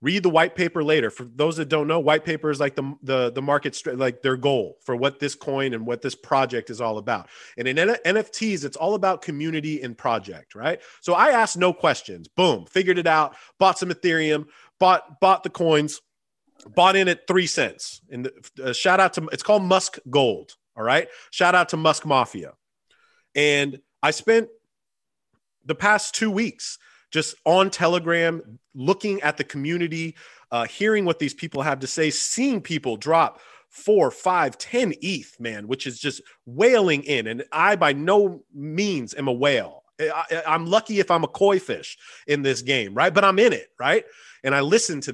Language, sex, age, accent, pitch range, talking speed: English, male, 30-49, American, 140-190 Hz, 195 wpm